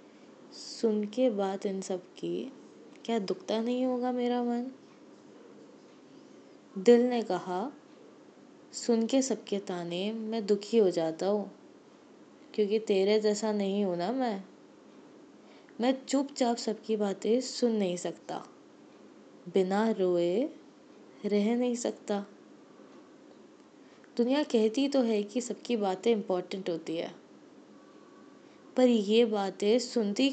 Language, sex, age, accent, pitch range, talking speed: Hindi, female, 20-39, native, 205-275 Hz, 110 wpm